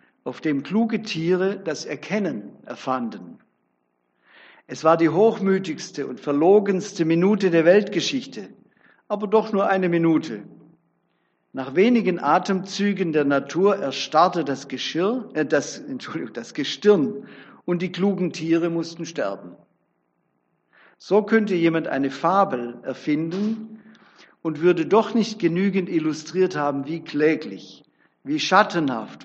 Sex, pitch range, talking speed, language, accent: male, 145-200 Hz, 115 wpm, German, German